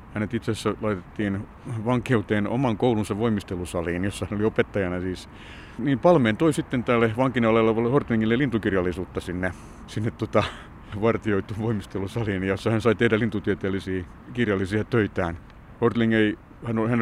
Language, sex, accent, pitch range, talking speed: Finnish, male, native, 95-120 Hz, 125 wpm